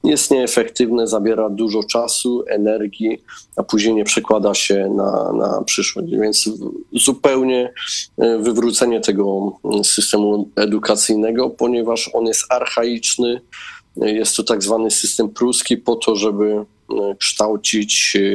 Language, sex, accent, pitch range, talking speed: Polish, male, native, 105-115 Hz, 110 wpm